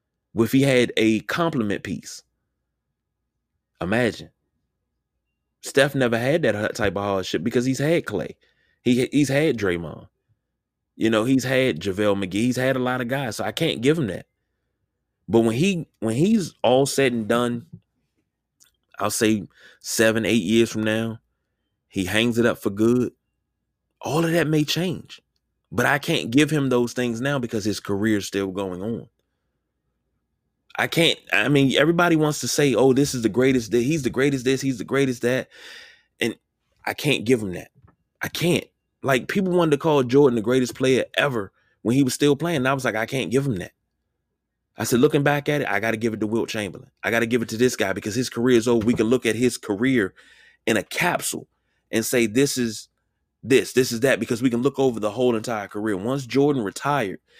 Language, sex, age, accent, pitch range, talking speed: English, male, 20-39, American, 110-135 Hz, 200 wpm